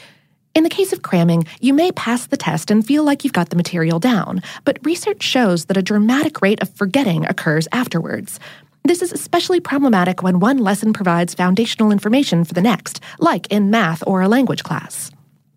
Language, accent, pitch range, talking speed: English, American, 180-280 Hz, 190 wpm